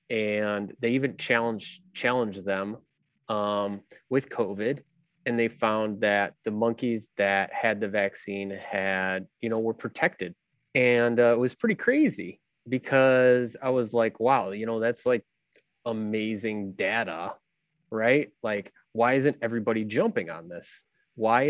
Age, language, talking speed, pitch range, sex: 20-39, English, 140 wpm, 105-125 Hz, male